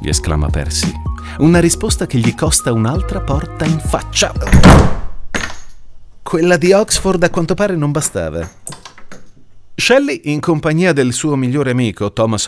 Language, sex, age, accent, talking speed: Italian, male, 30-49, native, 135 wpm